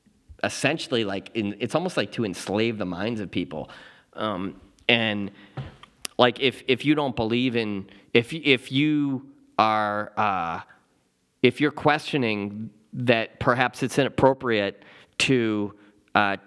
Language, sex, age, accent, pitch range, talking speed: English, male, 30-49, American, 105-135 Hz, 125 wpm